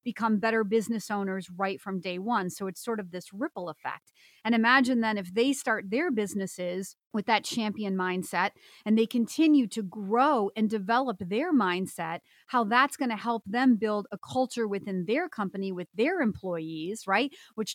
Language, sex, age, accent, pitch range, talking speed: English, female, 30-49, American, 195-240 Hz, 180 wpm